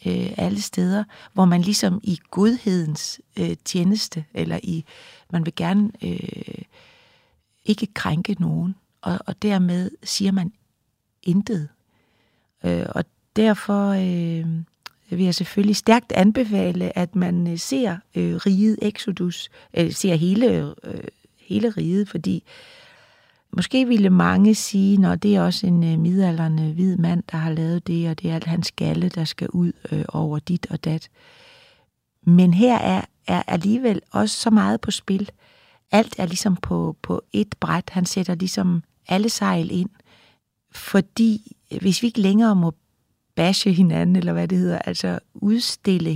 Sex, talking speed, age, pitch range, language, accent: female, 150 wpm, 40-59, 165-205 Hz, Danish, native